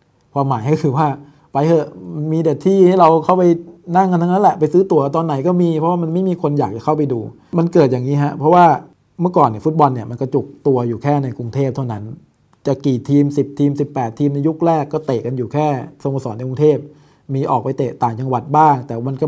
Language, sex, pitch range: English, male, 125-150 Hz